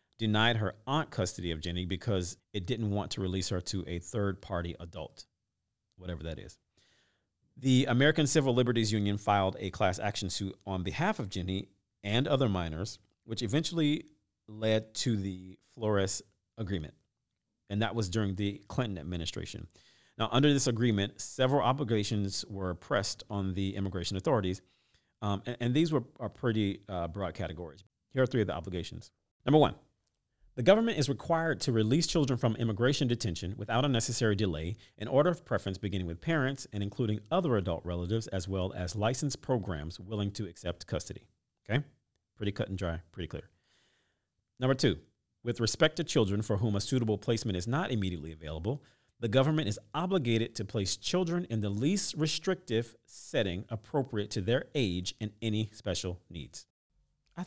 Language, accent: English, American